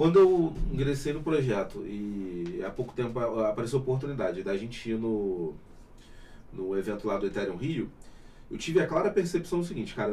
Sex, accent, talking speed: male, Brazilian, 180 wpm